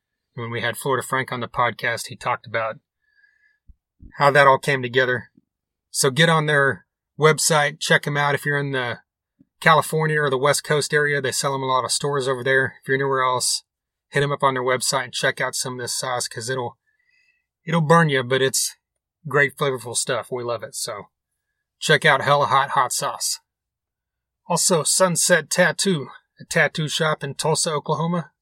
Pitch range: 130-155 Hz